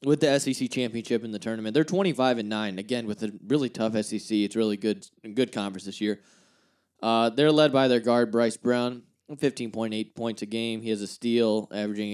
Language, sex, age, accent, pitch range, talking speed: English, male, 20-39, American, 110-130 Hz, 215 wpm